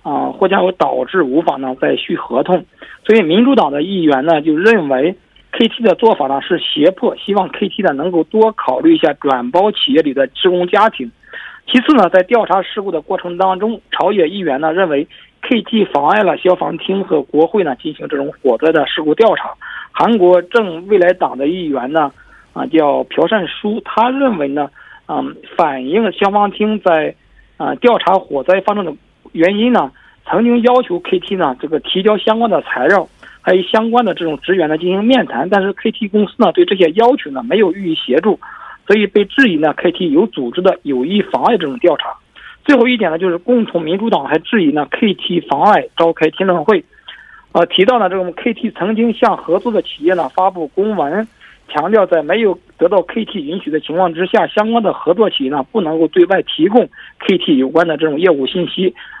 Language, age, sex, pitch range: Korean, 50-69, male, 165-225 Hz